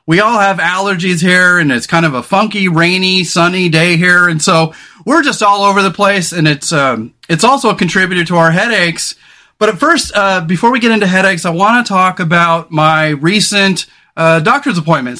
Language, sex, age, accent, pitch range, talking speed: English, male, 30-49, American, 165-205 Hz, 205 wpm